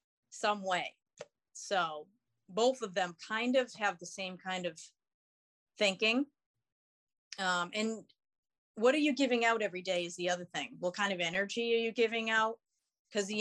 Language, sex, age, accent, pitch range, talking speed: English, female, 30-49, American, 175-220 Hz, 165 wpm